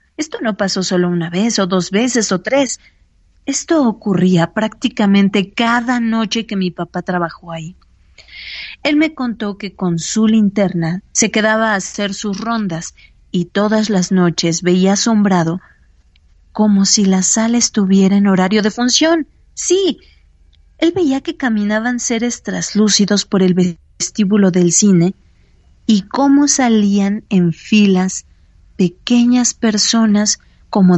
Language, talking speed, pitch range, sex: Dutch, 135 wpm, 180-225 Hz, female